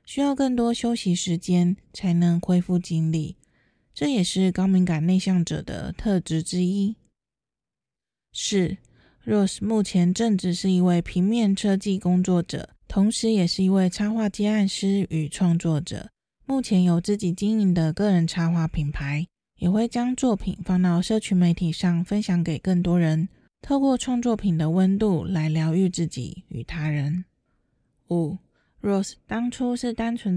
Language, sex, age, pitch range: Chinese, female, 20-39, 170-205 Hz